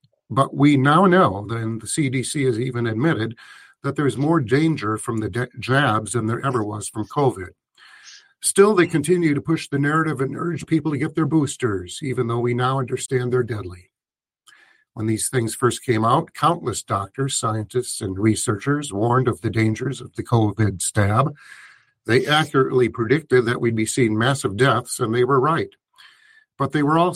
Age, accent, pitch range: 50-69, American, 110-145 Hz